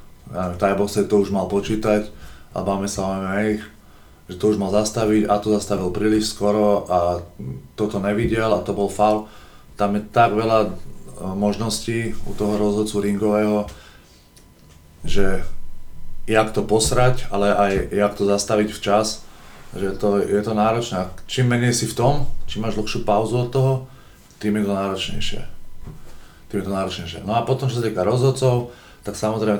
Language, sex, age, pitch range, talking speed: Slovak, male, 20-39, 95-110 Hz, 165 wpm